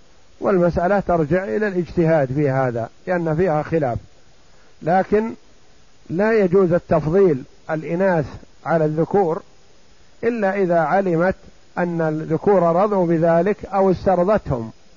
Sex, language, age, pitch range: male, Arabic, 50-69, 150-190 Hz